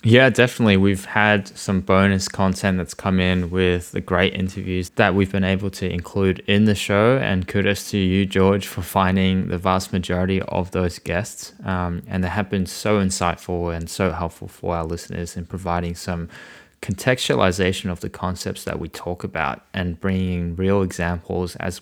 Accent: Australian